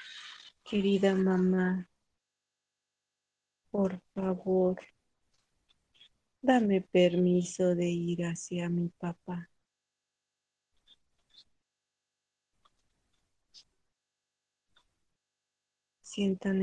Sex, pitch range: female, 180-205 Hz